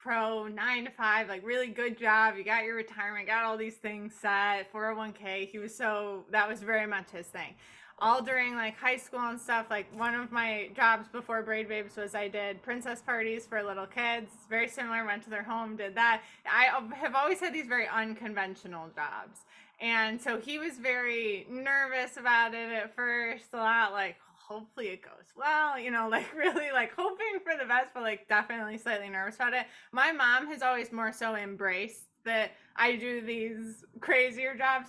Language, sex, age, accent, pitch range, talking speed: English, female, 20-39, American, 220-260 Hz, 195 wpm